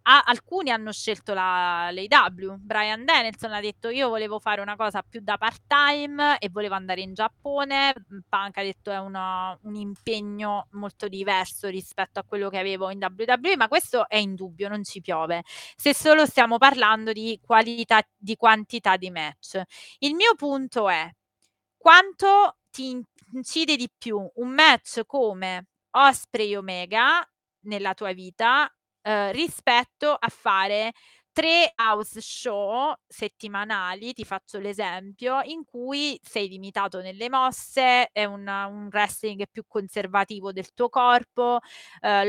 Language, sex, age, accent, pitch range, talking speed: Italian, female, 30-49, native, 200-250 Hz, 145 wpm